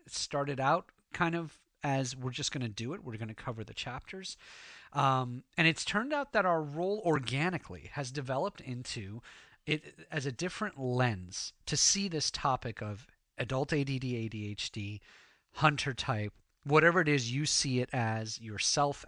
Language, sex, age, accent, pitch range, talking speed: English, male, 30-49, American, 115-145 Hz, 165 wpm